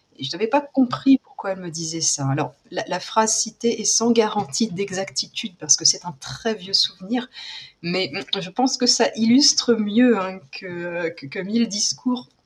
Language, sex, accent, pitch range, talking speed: French, female, French, 175-235 Hz, 185 wpm